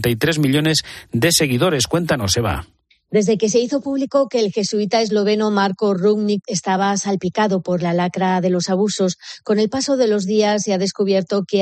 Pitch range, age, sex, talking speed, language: 180-215 Hz, 30-49, female, 175 wpm, Spanish